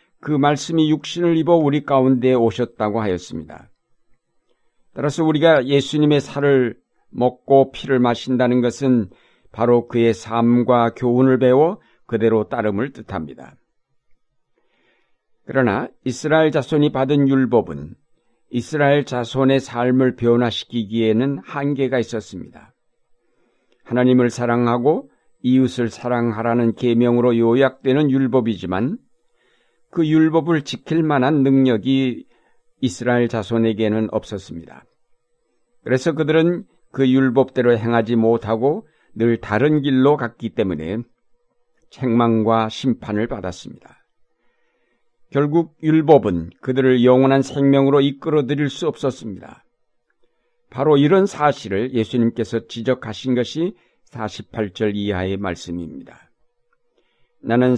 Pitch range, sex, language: 115-145 Hz, male, Korean